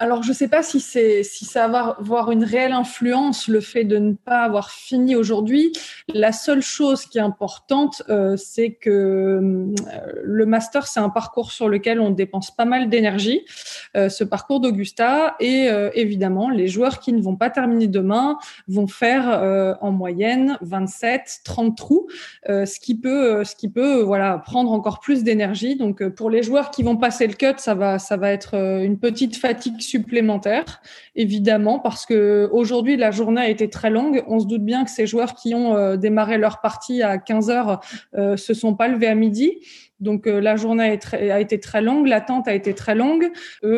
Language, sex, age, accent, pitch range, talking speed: French, female, 20-39, French, 200-245 Hz, 200 wpm